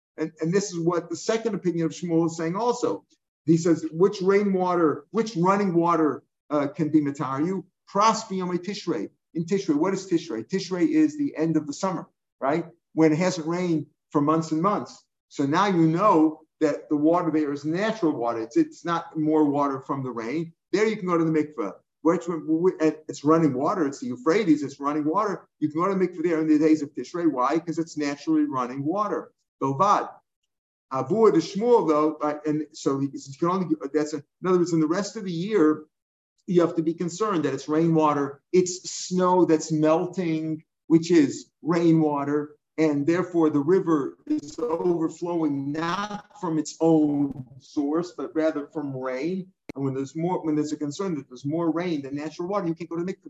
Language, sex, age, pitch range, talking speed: English, male, 50-69, 150-180 Hz, 200 wpm